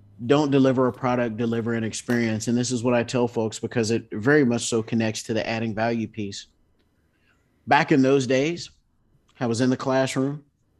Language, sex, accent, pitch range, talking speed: English, male, American, 105-135 Hz, 190 wpm